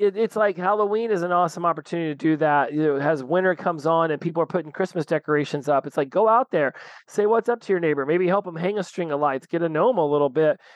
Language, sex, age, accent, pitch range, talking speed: English, male, 30-49, American, 145-185 Hz, 260 wpm